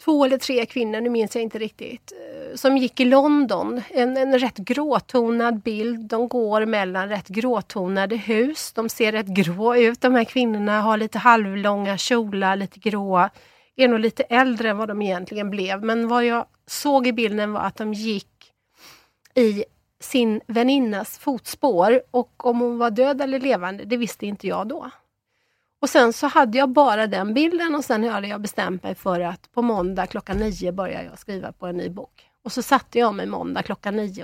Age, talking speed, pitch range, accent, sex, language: 30-49, 190 wpm, 200-245 Hz, native, female, Swedish